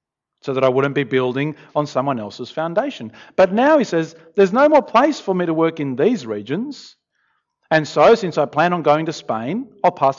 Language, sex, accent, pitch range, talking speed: English, male, Australian, 135-210 Hz, 210 wpm